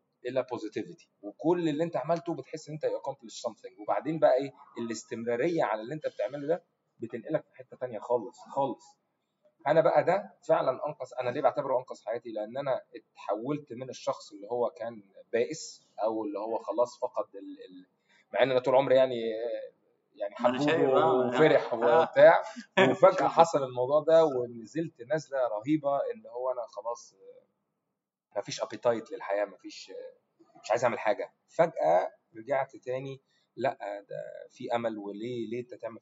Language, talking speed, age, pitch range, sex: Arabic, 145 wpm, 20-39, 115-170 Hz, male